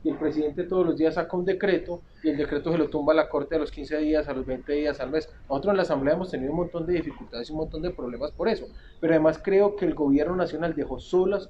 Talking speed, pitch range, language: 280 wpm, 140-170 Hz, Spanish